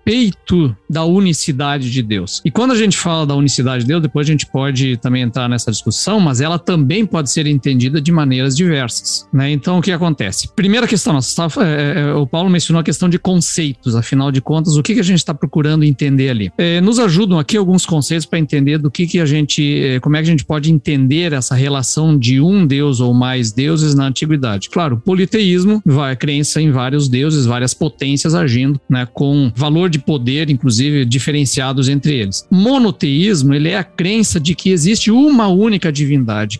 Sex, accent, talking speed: male, Brazilian, 200 wpm